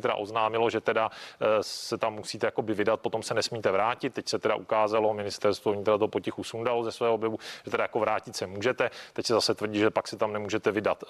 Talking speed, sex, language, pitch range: 215 wpm, male, Czech, 110-125 Hz